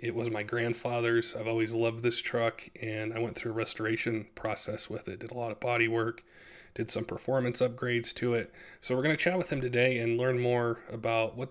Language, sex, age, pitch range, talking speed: English, male, 20-39, 110-120 Hz, 225 wpm